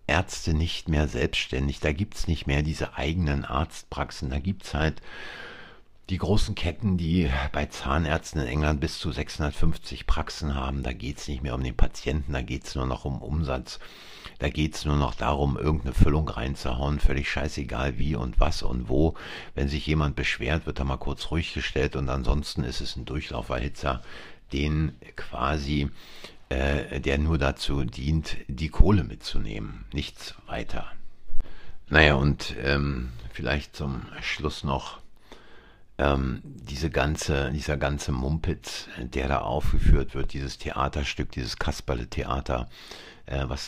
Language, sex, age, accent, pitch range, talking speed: German, male, 60-79, German, 70-80 Hz, 145 wpm